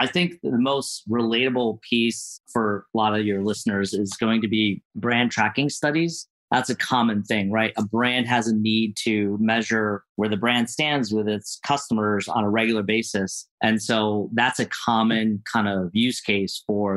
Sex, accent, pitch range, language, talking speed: male, American, 105-120 Hz, English, 185 wpm